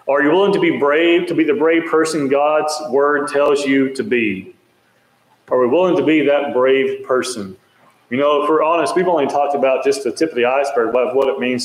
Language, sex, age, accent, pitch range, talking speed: English, male, 40-59, American, 125-155 Hz, 225 wpm